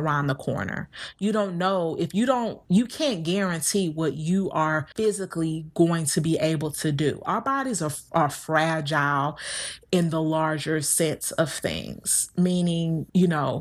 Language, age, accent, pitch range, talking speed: English, 30-49, American, 160-200 Hz, 160 wpm